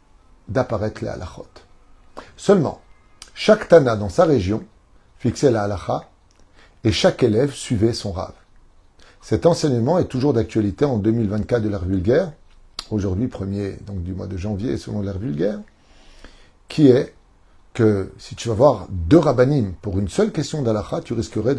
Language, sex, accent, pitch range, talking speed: French, male, French, 105-155 Hz, 150 wpm